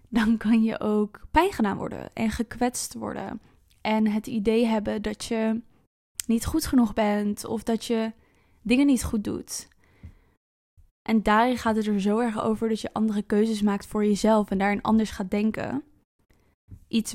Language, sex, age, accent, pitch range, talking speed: Dutch, female, 10-29, Dutch, 210-235 Hz, 170 wpm